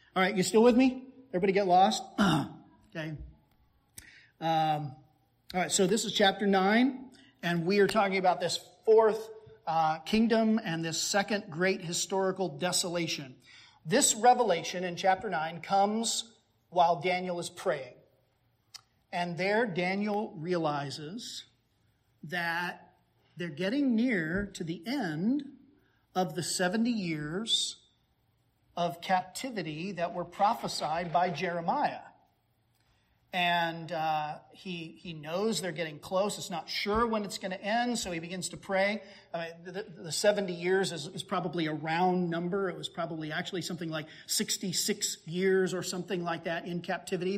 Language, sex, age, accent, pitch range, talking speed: English, male, 40-59, American, 170-205 Hz, 140 wpm